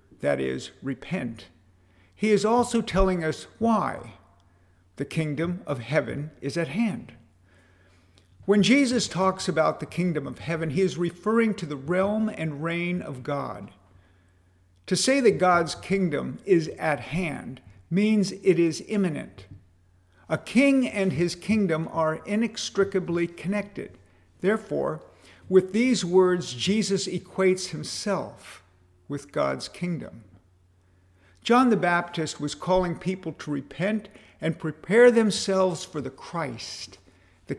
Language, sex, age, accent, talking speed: English, male, 50-69, American, 125 wpm